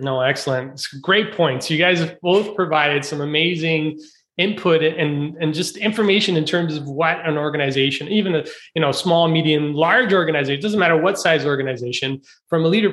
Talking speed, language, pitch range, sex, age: 185 wpm, English, 145-185 Hz, male, 30-49